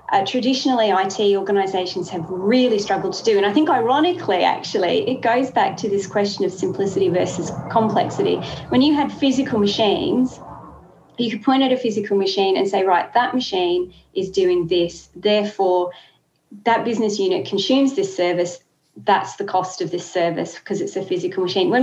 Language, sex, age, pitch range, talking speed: English, female, 30-49, 190-230 Hz, 175 wpm